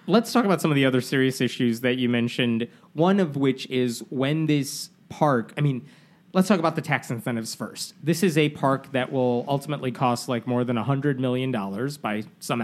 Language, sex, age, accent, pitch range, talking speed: English, male, 30-49, American, 125-170 Hz, 205 wpm